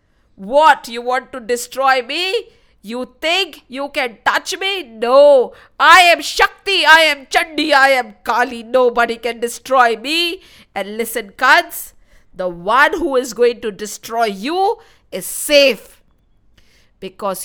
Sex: female